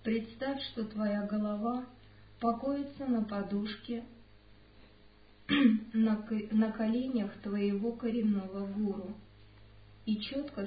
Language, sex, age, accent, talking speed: Russian, male, 50-69, native, 80 wpm